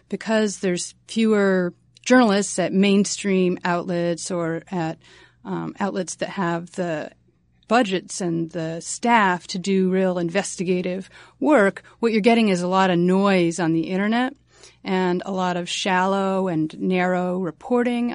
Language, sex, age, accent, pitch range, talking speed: English, female, 30-49, American, 180-215 Hz, 140 wpm